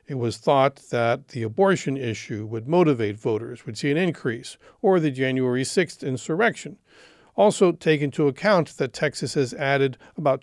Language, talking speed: English, 160 wpm